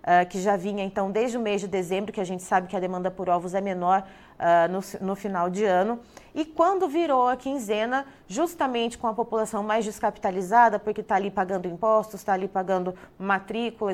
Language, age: Portuguese, 20-39